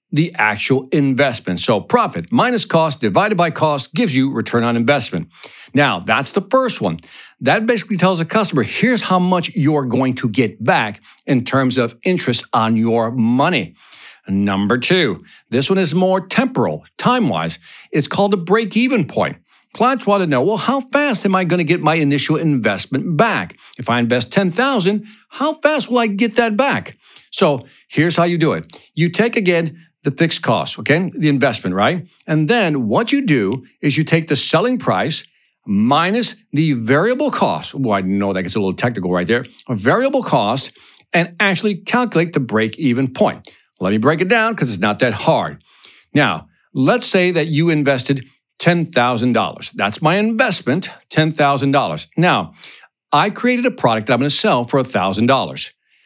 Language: English